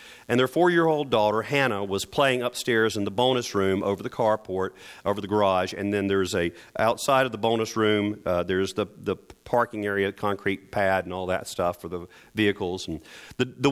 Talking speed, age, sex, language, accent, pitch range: 195 wpm, 40-59, male, English, American, 95-125 Hz